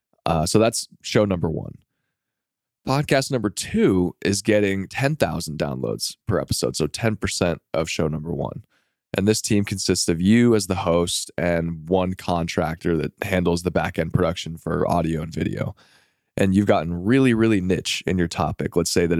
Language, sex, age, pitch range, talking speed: English, male, 20-39, 85-105 Hz, 170 wpm